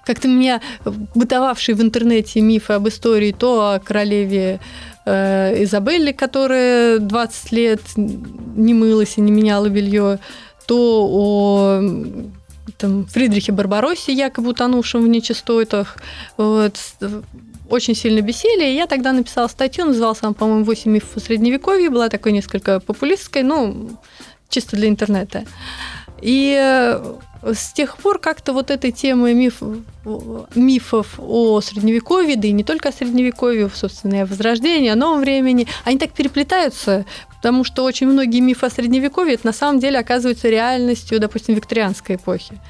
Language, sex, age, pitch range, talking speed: Russian, female, 30-49, 210-255 Hz, 135 wpm